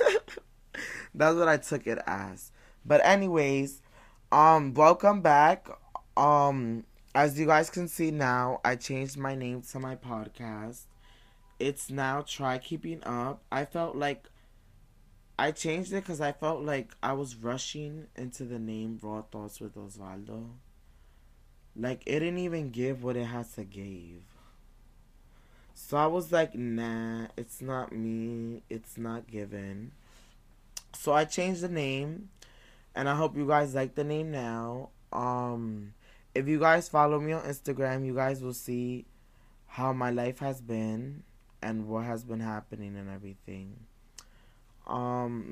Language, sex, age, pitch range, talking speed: English, male, 20-39, 110-145 Hz, 145 wpm